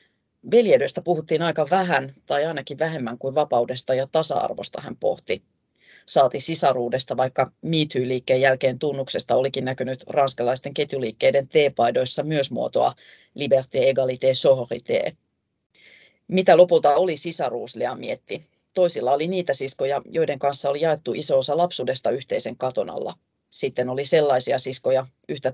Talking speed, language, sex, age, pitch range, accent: 125 wpm, Finnish, female, 30-49, 130-155 Hz, native